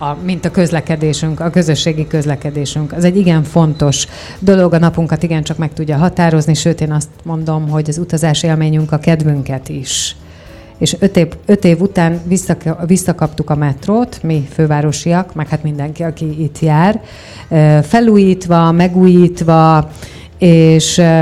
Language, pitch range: Hungarian, 150-175 Hz